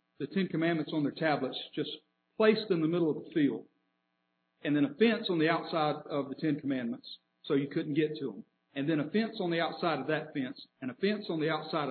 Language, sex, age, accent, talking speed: English, male, 50-69, American, 235 wpm